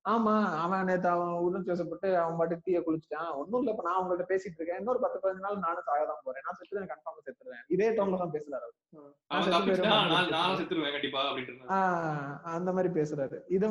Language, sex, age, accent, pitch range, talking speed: Tamil, male, 20-39, native, 150-190 Hz, 150 wpm